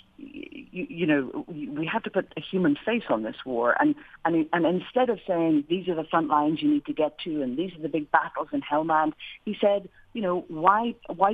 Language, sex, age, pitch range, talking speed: English, female, 40-59, 160-220 Hz, 235 wpm